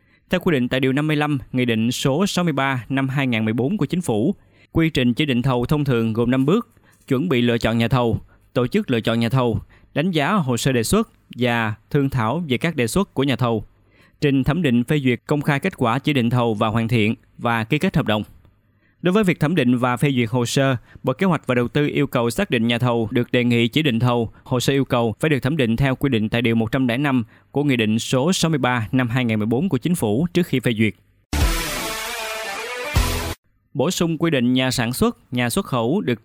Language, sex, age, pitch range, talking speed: Vietnamese, male, 20-39, 115-150 Hz, 230 wpm